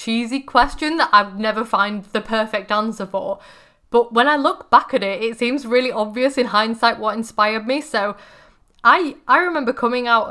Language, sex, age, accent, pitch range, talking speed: English, female, 10-29, British, 215-275 Hz, 190 wpm